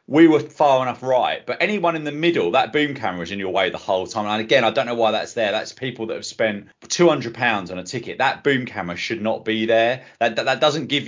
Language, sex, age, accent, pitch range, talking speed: English, male, 30-49, British, 110-150 Hz, 275 wpm